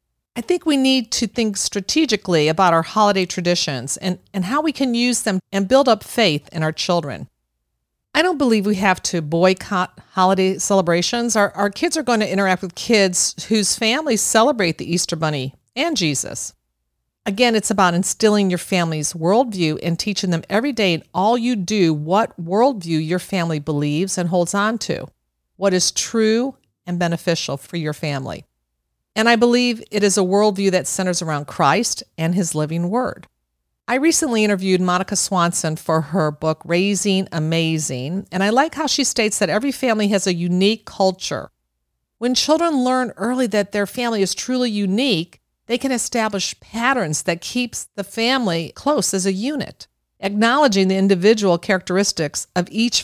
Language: English